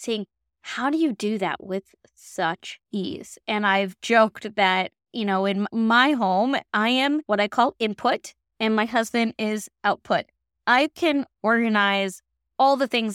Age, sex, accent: 20-39, female, American